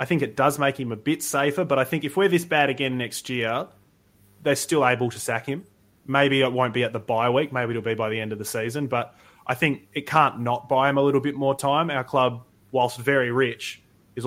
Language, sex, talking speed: English, male, 255 wpm